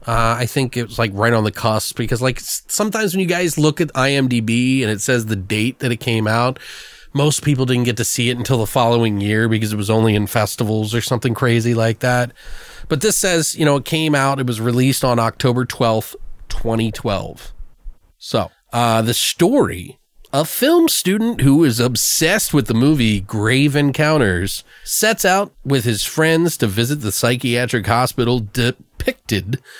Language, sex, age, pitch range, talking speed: English, male, 30-49, 115-150 Hz, 185 wpm